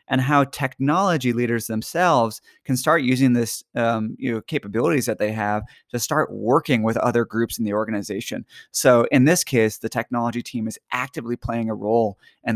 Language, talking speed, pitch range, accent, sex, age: English, 180 wpm, 110-130 Hz, American, male, 20-39